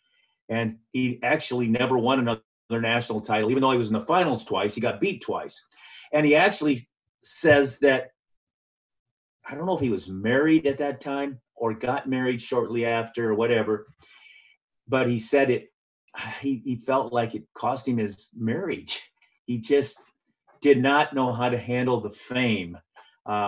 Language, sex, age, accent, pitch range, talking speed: English, male, 40-59, American, 110-135 Hz, 170 wpm